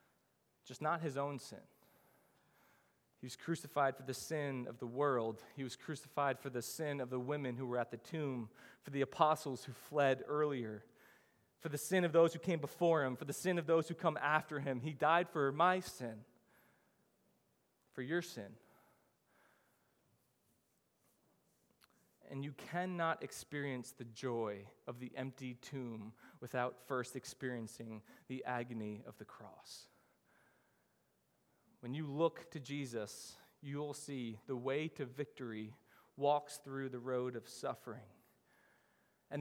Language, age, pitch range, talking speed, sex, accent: English, 20-39, 130-170 Hz, 150 wpm, male, American